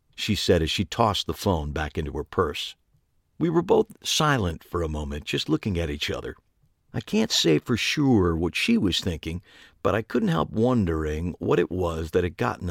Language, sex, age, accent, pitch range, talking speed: English, male, 50-69, American, 85-115 Hz, 205 wpm